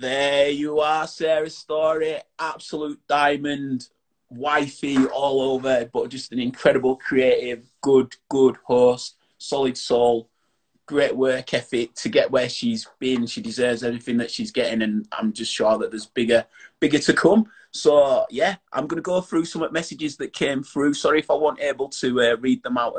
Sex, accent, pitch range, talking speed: male, British, 125-160 Hz, 170 wpm